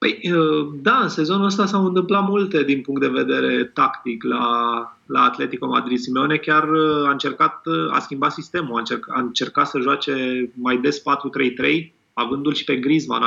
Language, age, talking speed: Romanian, 20-39, 160 wpm